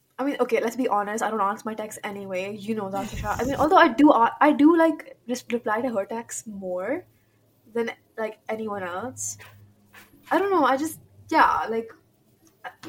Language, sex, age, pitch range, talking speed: English, female, 10-29, 205-250 Hz, 200 wpm